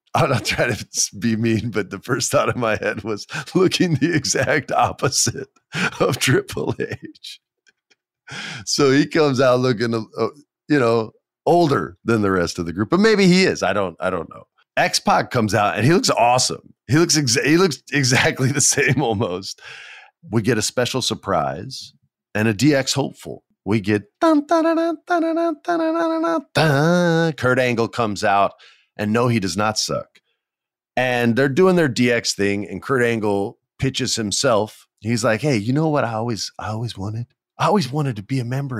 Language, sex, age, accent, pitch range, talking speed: English, male, 40-59, American, 105-145 Hz, 170 wpm